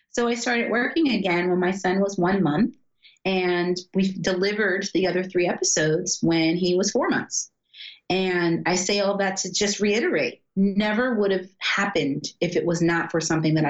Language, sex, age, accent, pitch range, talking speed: English, female, 30-49, American, 160-205 Hz, 185 wpm